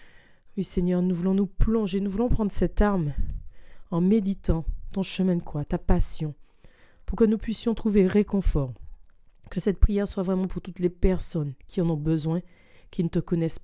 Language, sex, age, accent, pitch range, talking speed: French, female, 30-49, French, 165-195 Hz, 185 wpm